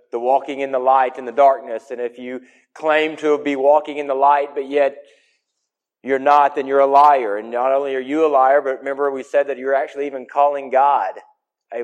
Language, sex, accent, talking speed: English, male, American, 225 wpm